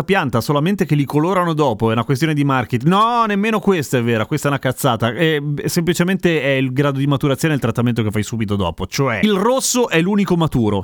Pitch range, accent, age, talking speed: 125-170 Hz, native, 30-49, 215 wpm